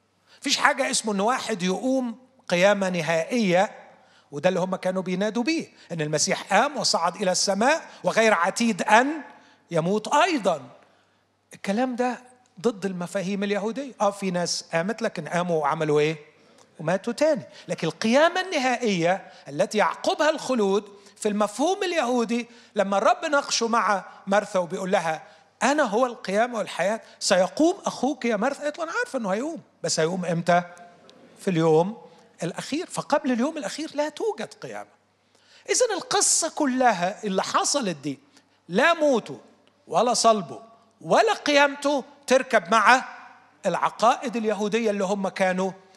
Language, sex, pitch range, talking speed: Arabic, male, 190-275 Hz, 130 wpm